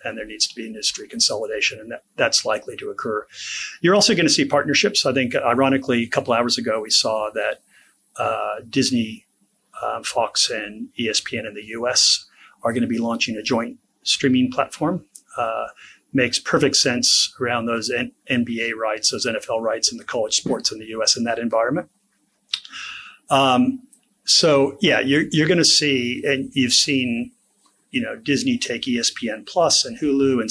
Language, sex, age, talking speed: English, male, 40-59, 170 wpm